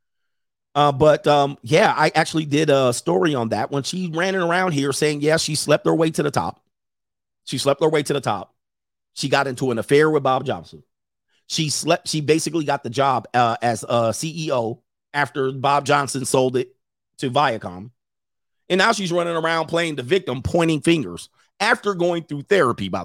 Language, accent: English, American